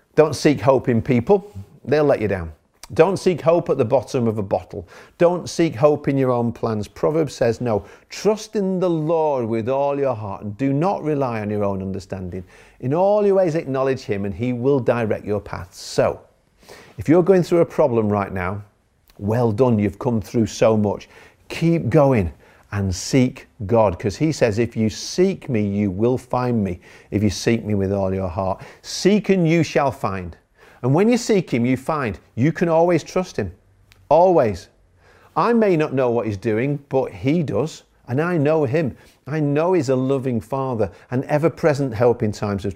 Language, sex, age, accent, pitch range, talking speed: English, male, 50-69, British, 105-155 Hz, 200 wpm